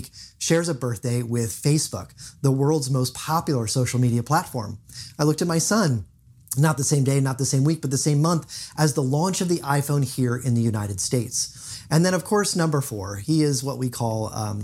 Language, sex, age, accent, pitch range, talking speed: English, male, 30-49, American, 125-160 Hz, 215 wpm